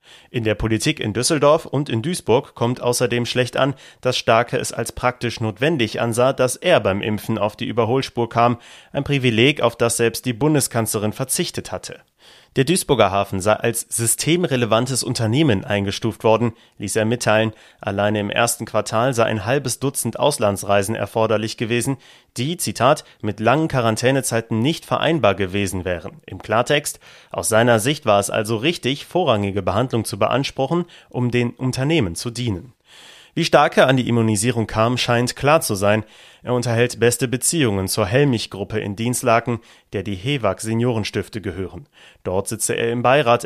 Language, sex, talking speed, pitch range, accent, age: German, male, 155 wpm, 110-135 Hz, German, 30-49